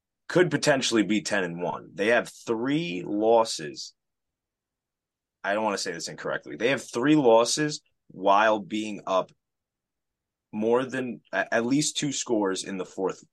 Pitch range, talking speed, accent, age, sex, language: 95-115 Hz, 150 wpm, American, 20-39, male, English